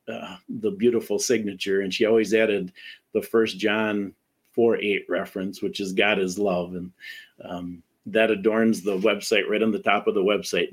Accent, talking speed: American, 180 wpm